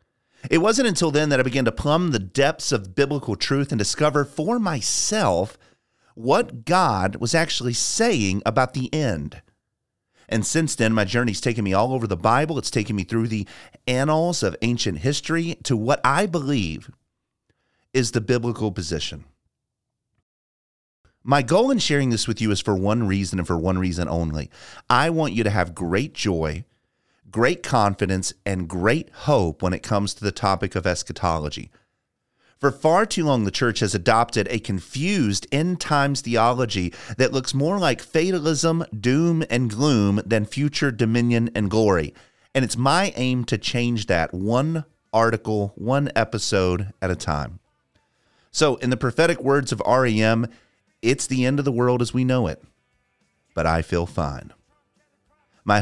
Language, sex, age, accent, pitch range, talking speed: English, male, 30-49, American, 95-135 Hz, 160 wpm